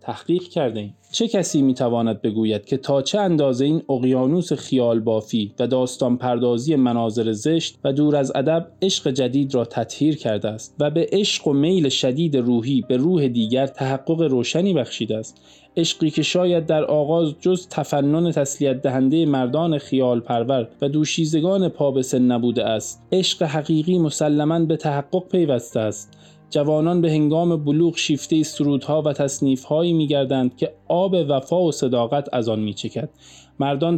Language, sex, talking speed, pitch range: Persian, male, 150 wpm, 125-165 Hz